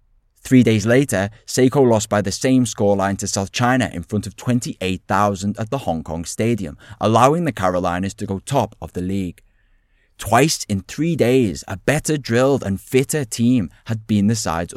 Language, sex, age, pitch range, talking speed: English, male, 20-39, 95-125 Hz, 180 wpm